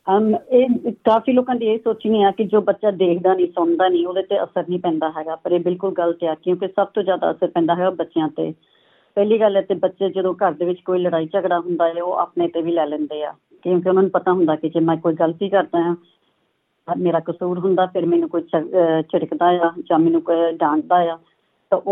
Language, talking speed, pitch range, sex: Punjabi, 230 wpm, 170-195 Hz, female